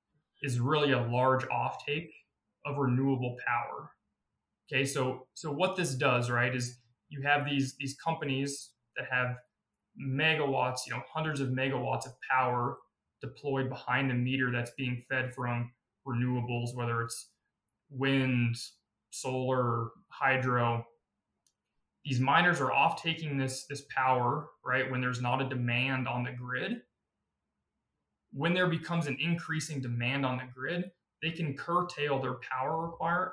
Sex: male